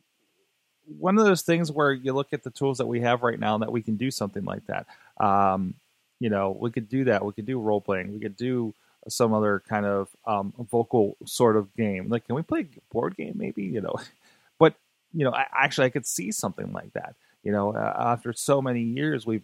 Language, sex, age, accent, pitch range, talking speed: English, male, 30-49, American, 105-125 Hz, 230 wpm